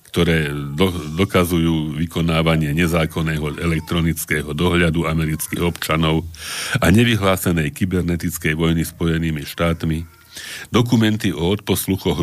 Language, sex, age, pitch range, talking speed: Slovak, male, 60-79, 80-95 Hz, 90 wpm